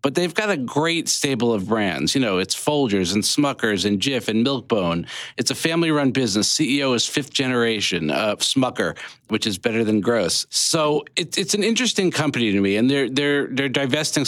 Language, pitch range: English, 115-145 Hz